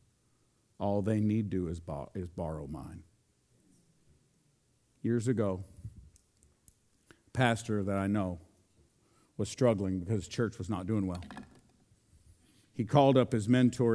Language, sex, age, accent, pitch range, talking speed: English, male, 50-69, American, 95-120 Hz, 120 wpm